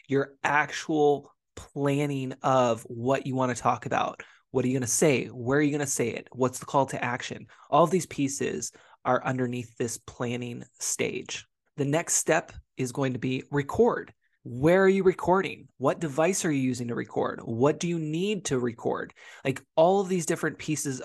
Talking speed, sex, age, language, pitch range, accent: 195 wpm, male, 20-39, English, 125-155 Hz, American